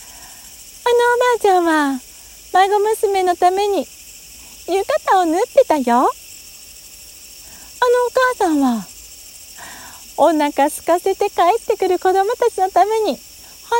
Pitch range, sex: 295-430 Hz, female